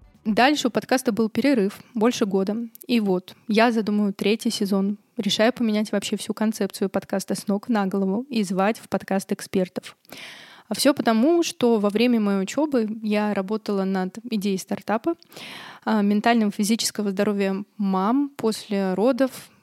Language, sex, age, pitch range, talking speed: Russian, female, 20-39, 200-230 Hz, 140 wpm